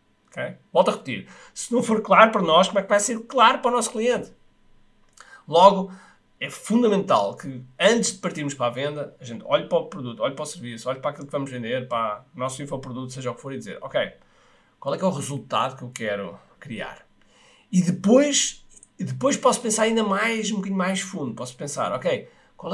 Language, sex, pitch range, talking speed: Portuguese, male, 130-215 Hz, 215 wpm